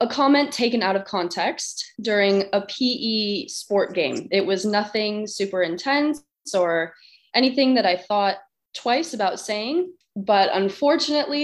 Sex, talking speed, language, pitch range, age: female, 135 wpm, English, 190-235 Hz, 20-39